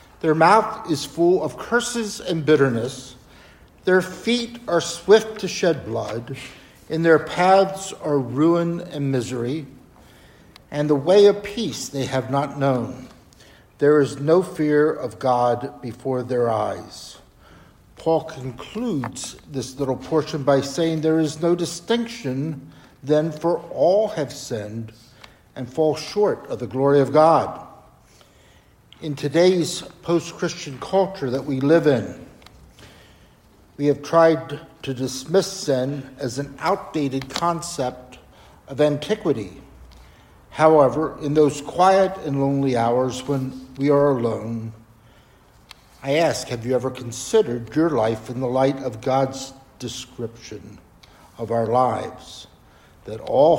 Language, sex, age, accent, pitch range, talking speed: English, male, 60-79, American, 125-165 Hz, 130 wpm